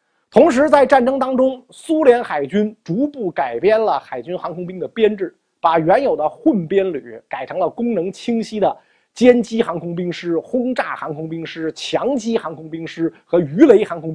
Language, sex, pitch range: Chinese, male, 165-260 Hz